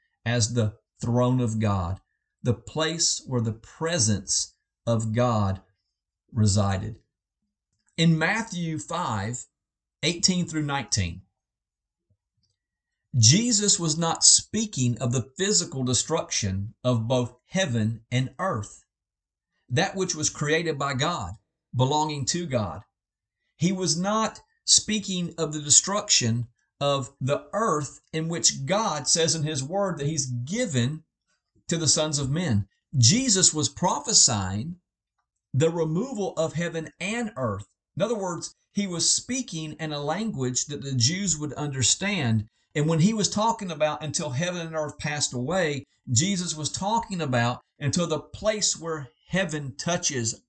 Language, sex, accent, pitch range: English, male, American, 115-170 Hz